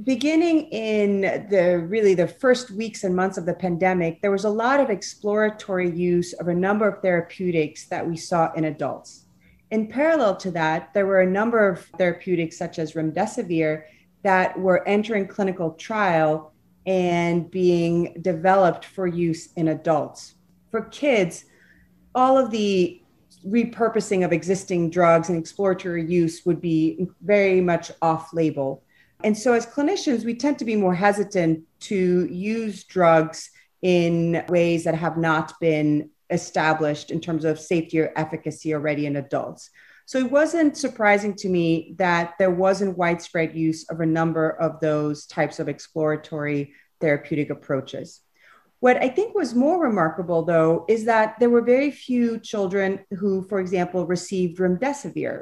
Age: 30-49